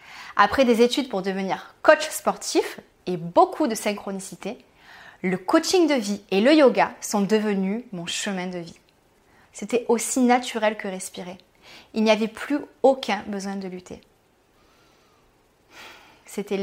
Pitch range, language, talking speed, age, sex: 190-250 Hz, French, 135 wpm, 20-39, female